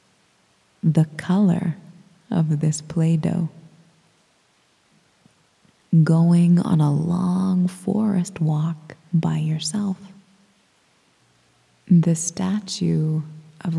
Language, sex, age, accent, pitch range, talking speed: English, female, 20-39, American, 155-185 Hz, 70 wpm